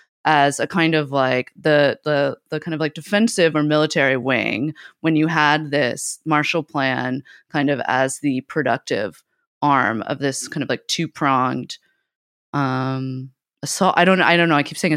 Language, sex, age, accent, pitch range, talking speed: English, female, 20-39, American, 140-165 Hz, 175 wpm